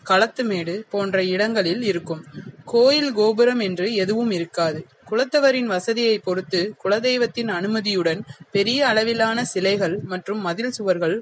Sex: female